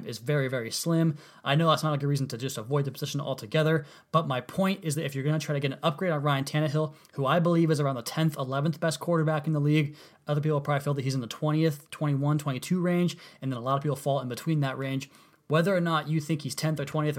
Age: 20-39